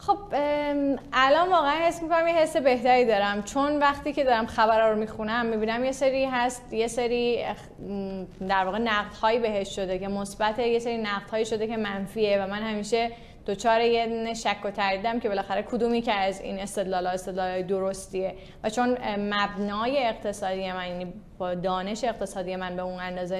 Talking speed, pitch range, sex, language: 175 wpm, 200-240 Hz, female, Persian